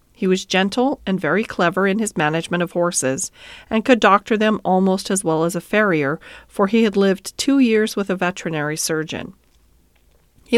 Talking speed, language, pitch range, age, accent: 180 wpm, English, 180-235 Hz, 40-59, American